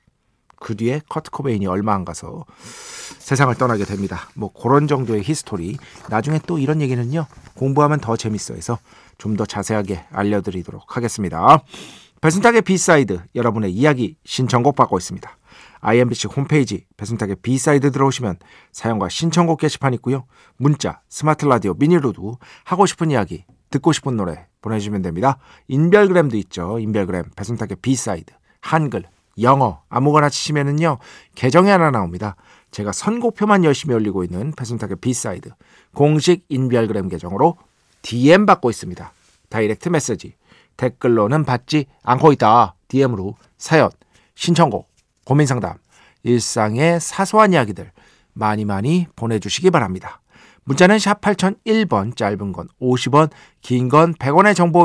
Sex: male